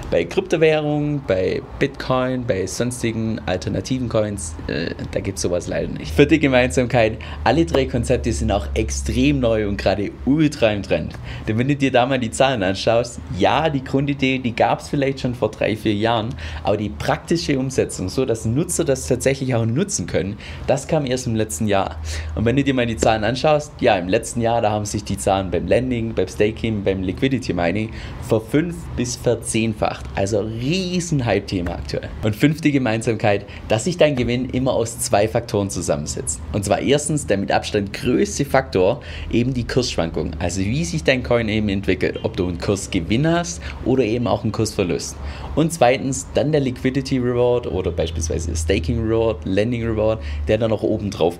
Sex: male